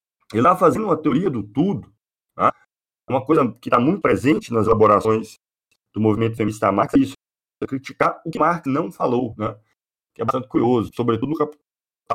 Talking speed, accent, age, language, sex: 185 wpm, Brazilian, 40-59, Portuguese, male